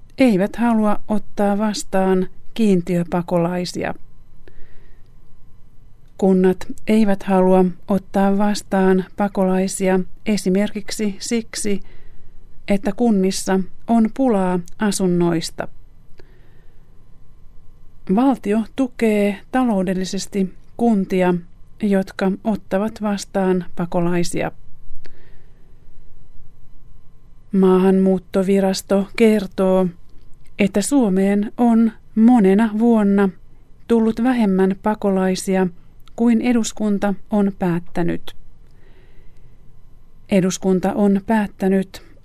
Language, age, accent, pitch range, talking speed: Finnish, 30-49, native, 185-215 Hz, 60 wpm